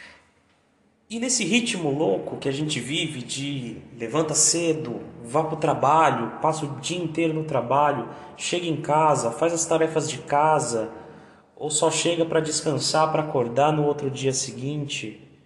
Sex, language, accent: male, Portuguese, Brazilian